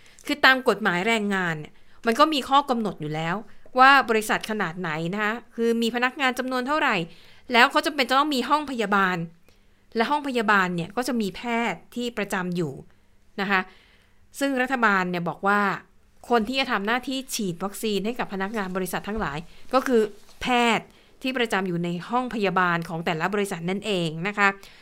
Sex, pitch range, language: female, 190-240 Hz, Thai